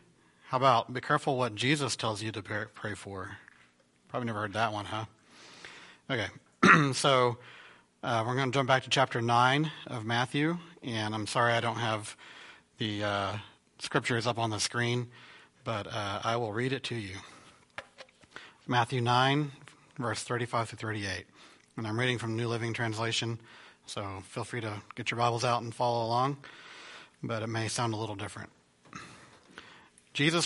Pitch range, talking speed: 110-140 Hz, 165 wpm